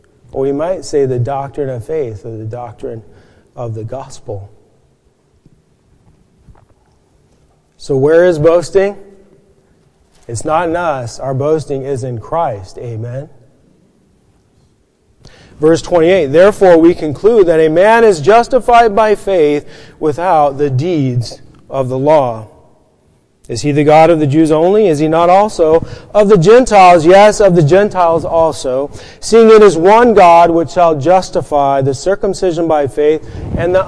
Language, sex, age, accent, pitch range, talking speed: English, male, 30-49, American, 130-180 Hz, 140 wpm